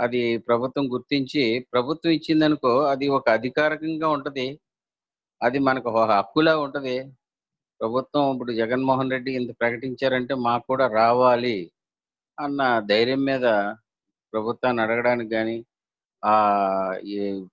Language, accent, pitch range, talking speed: Telugu, native, 105-125 Hz, 95 wpm